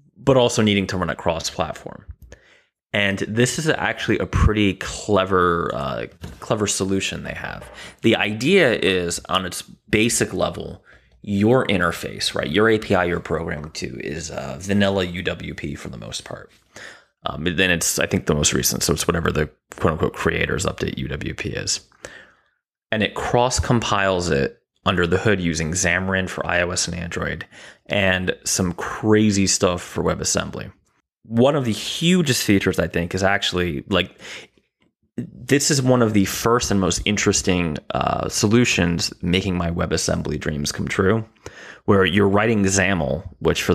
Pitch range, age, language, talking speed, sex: 85-105 Hz, 20-39, English, 155 wpm, male